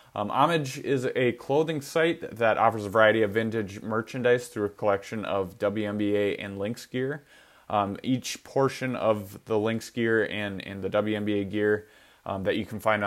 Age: 20-39